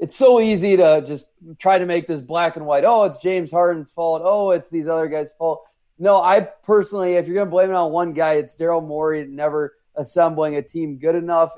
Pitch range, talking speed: 135-170 Hz, 230 wpm